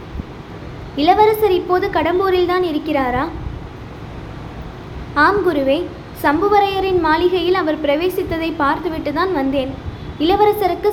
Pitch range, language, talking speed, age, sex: 310-375 Hz, Tamil, 65 wpm, 20-39, female